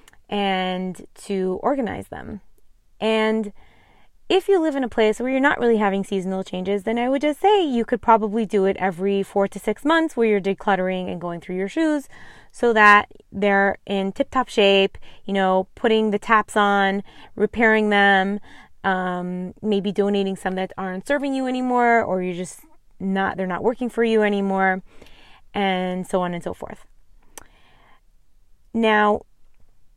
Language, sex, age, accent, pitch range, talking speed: English, female, 20-39, American, 190-230 Hz, 160 wpm